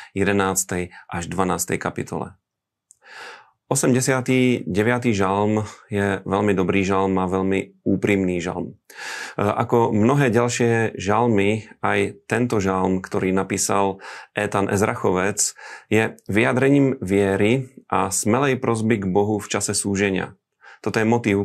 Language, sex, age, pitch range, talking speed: Slovak, male, 30-49, 100-115 Hz, 110 wpm